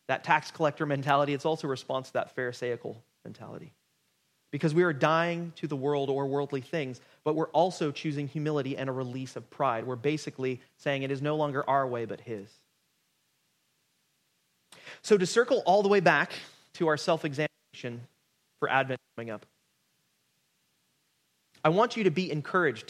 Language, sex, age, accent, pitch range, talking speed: English, male, 30-49, American, 135-160 Hz, 165 wpm